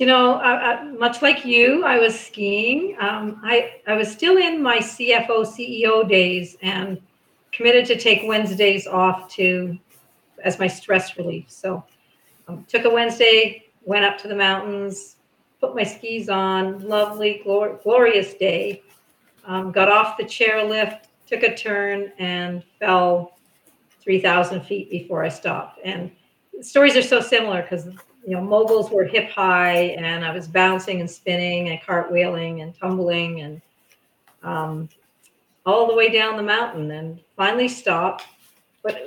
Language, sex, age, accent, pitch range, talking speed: English, female, 50-69, American, 185-225 Hz, 150 wpm